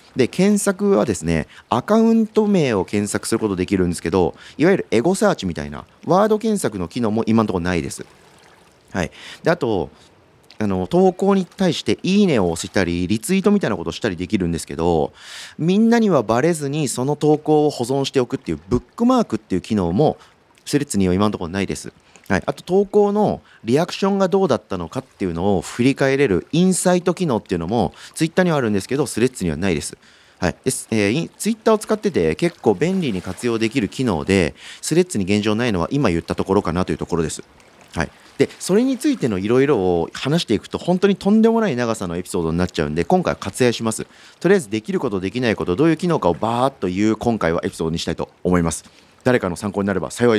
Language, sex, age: Japanese, male, 40-59